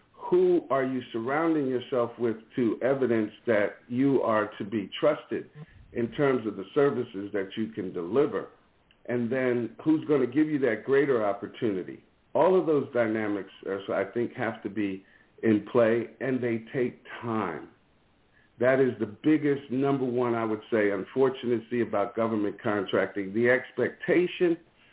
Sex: male